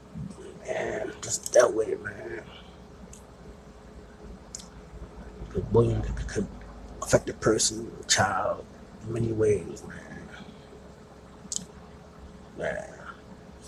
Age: 20-39